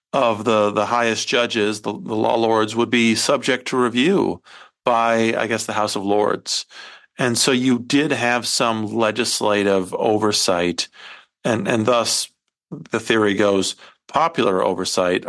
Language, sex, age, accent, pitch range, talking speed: English, male, 40-59, American, 105-125 Hz, 145 wpm